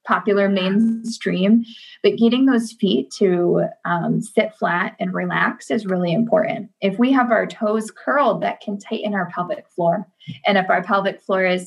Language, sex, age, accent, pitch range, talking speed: English, female, 20-39, American, 185-225 Hz, 170 wpm